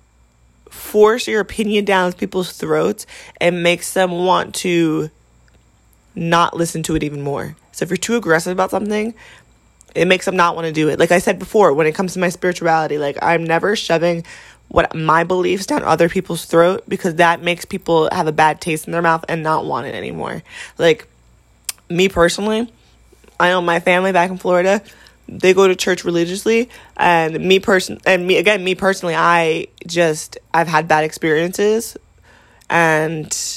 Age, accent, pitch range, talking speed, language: 20-39, American, 160-185 Hz, 175 wpm, English